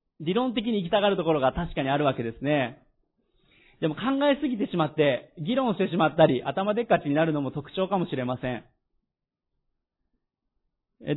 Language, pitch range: Japanese, 135-185 Hz